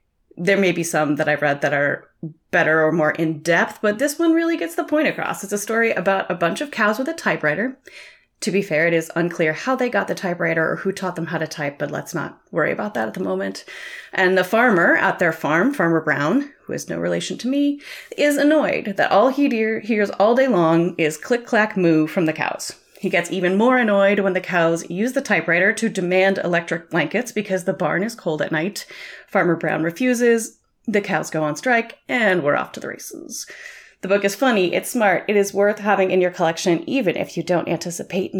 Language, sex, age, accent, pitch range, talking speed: English, female, 30-49, American, 170-240 Hz, 220 wpm